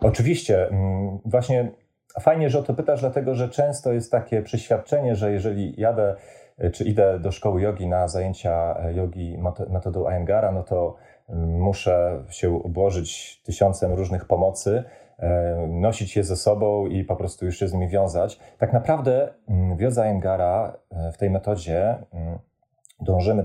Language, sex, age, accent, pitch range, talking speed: Polish, male, 30-49, native, 90-110 Hz, 135 wpm